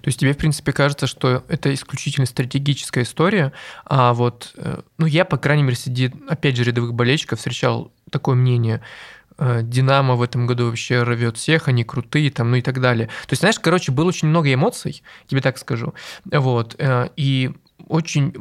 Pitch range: 125-150 Hz